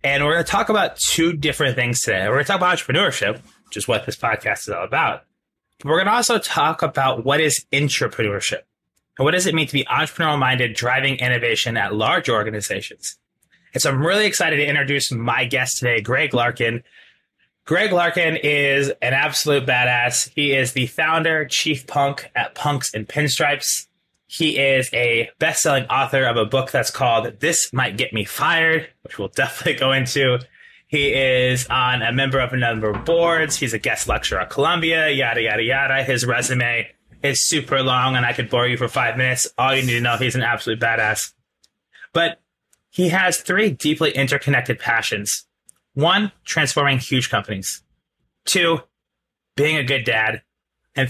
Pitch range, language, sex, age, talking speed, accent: 125-150 Hz, English, male, 20-39, 180 wpm, American